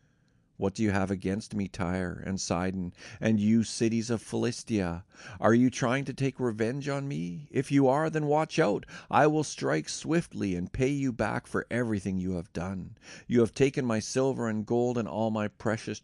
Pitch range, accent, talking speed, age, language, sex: 95-125 Hz, American, 195 wpm, 50-69, English, male